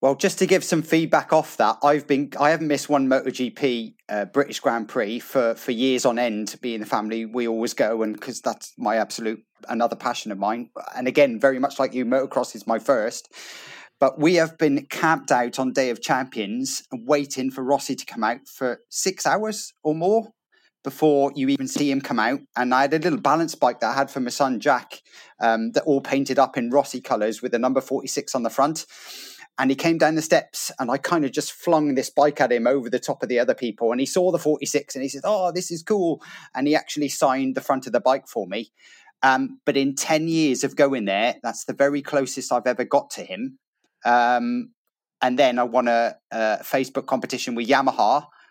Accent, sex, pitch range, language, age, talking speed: British, male, 125-155 Hz, English, 30-49, 225 wpm